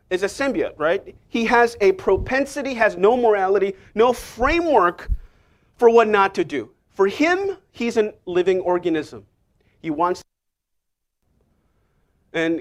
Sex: male